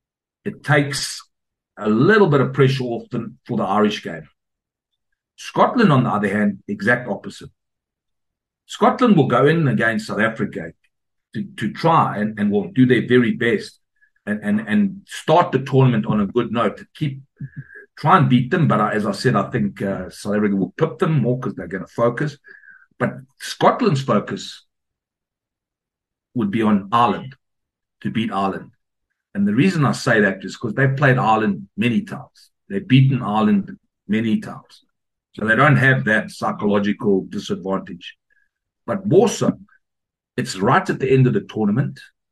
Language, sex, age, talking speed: English, male, 60-79, 165 wpm